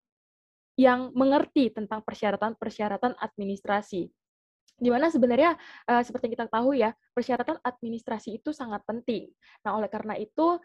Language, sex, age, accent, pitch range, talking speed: Indonesian, female, 10-29, native, 210-270 Hz, 120 wpm